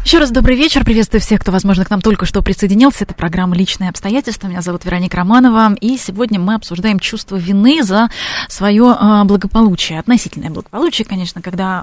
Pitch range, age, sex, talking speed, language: 180-220 Hz, 20-39, female, 185 wpm, Russian